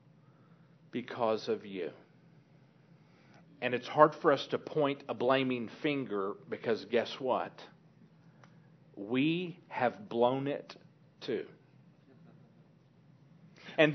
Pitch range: 145-175 Hz